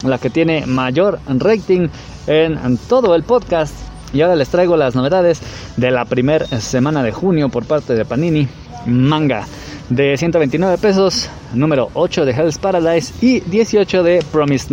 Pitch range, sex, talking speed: 130-185 Hz, male, 155 wpm